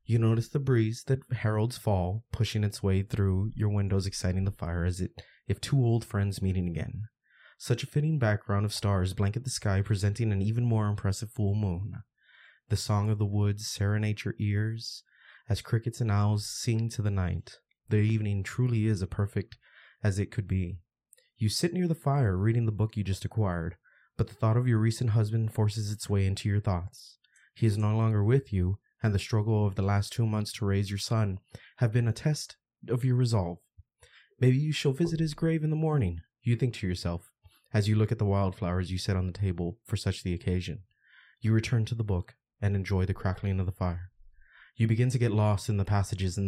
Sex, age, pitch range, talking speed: male, 20-39, 100-115 Hz, 210 wpm